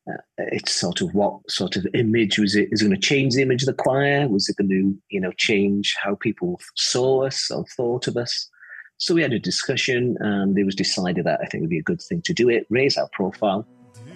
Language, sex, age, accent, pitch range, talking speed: English, male, 40-59, British, 100-130 Hz, 245 wpm